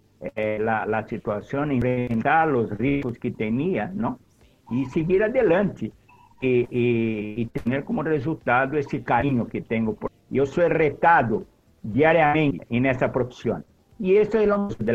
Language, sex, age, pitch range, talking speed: Spanish, male, 60-79, 115-145 Hz, 140 wpm